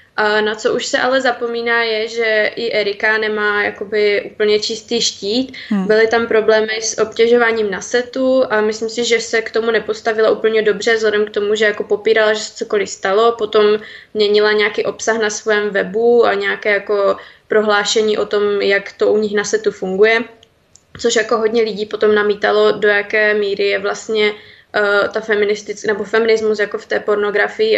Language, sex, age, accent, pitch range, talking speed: Czech, female, 20-39, native, 205-220 Hz, 175 wpm